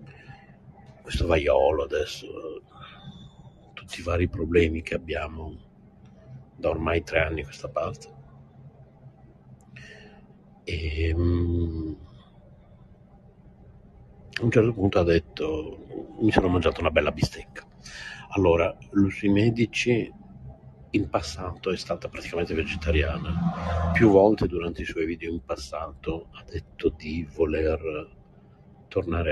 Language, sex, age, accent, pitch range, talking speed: Italian, male, 60-79, native, 80-110 Hz, 105 wpm